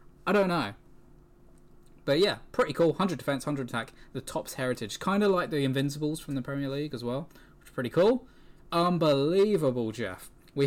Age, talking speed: 10-29, 180 wpm